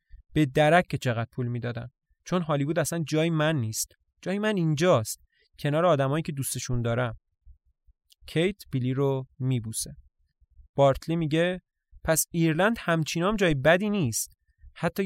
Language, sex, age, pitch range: English, male, 20-39, 120-165 Hz